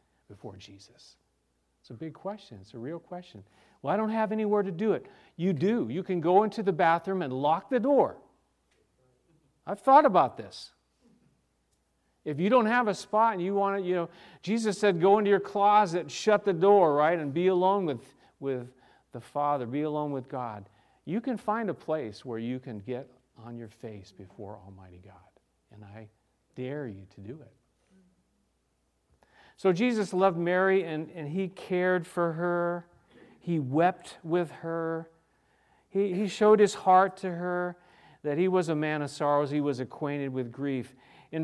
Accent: American